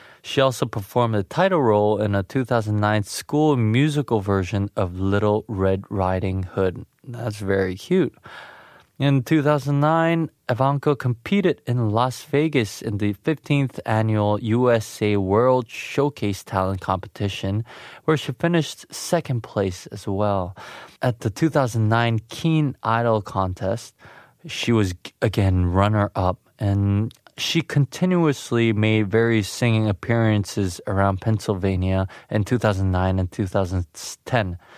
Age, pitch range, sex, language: 20-39, 100-130 Hz, male, Korean